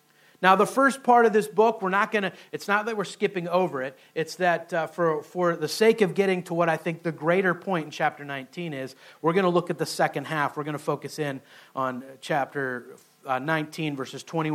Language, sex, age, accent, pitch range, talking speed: English, male, 40-59, American, 155-185 Hz, 235 wpm